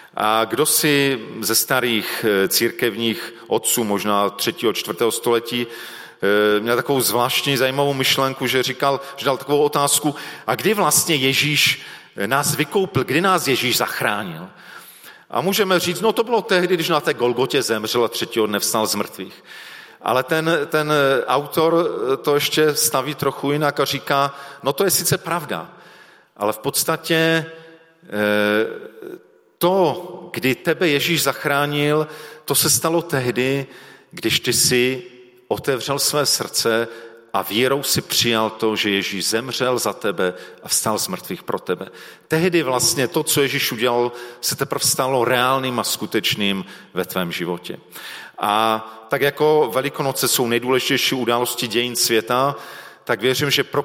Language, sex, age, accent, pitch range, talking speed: Czech, male, 40-59, native, 120-150 Hz, 140 wpm